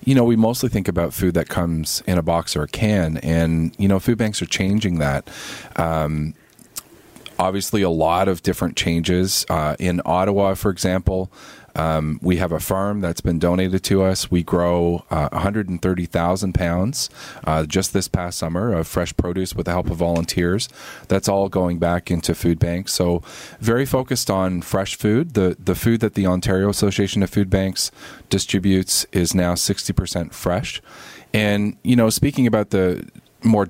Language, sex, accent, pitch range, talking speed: English, male, American, 85-100 Hz, 175 wpm